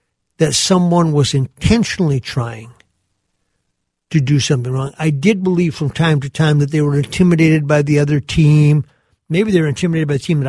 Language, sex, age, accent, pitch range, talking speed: English, male, 50-69, American, 130-180 Hz, 185 wpm